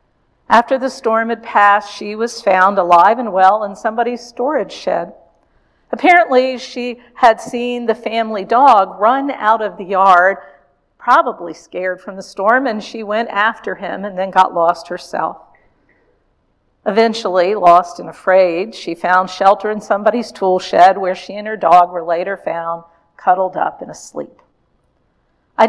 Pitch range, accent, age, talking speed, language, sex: 185-240 Hz, American, 50-69, 155 wpm, English, female